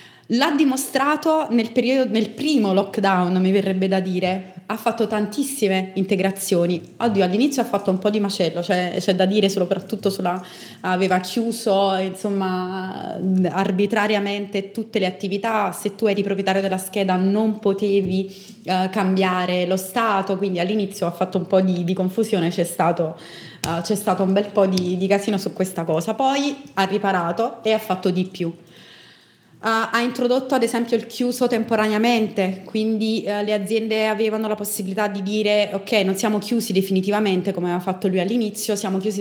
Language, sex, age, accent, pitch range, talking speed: Italian, female, 20-39, native, 185-220 Hz, 165 wpm